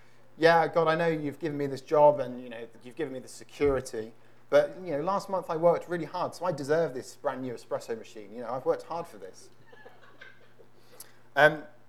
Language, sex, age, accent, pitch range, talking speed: English, male, 30-49, British, 120-160 Hz, 210 wpm